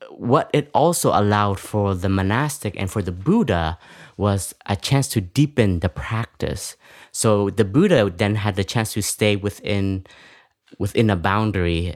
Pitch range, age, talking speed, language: 95-110 Hz, 20-39, 155 wpm, English